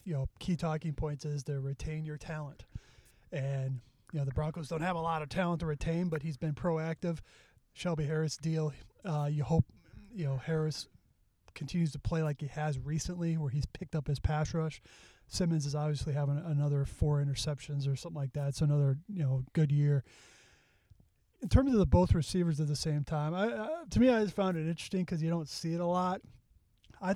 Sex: male